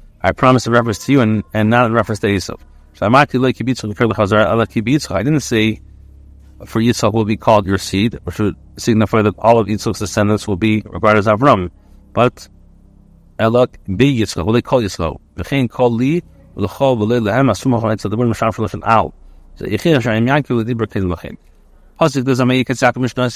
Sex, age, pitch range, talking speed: male, 30-49, 105-125 Hz, 110 wpm